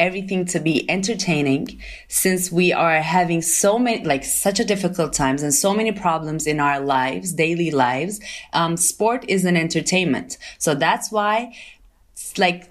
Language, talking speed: German, 155 wpm